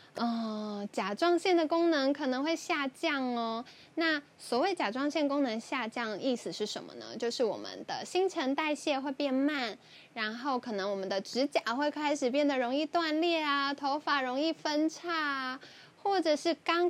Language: Chinese